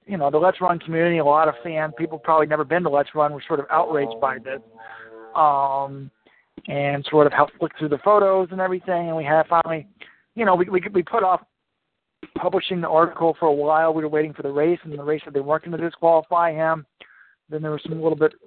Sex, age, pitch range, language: male, 40-59, 140-170 Hz, English